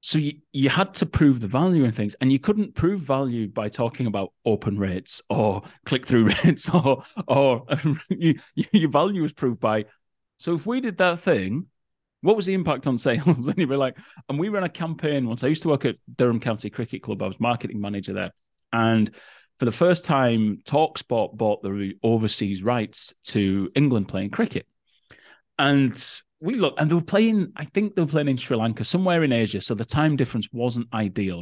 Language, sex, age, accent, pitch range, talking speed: English, male, 30-49, British, 105-155 Hz, 200 wpm